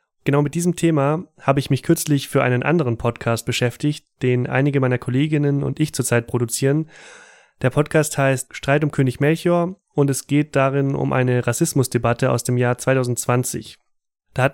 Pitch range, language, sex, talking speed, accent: 125-145 Hz, German, male, 170 wpm, German